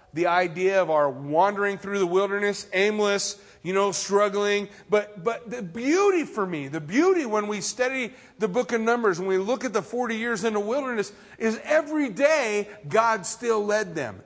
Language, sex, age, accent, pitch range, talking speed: English, male, 40-59, American, 190-235 Hz, 185 wpm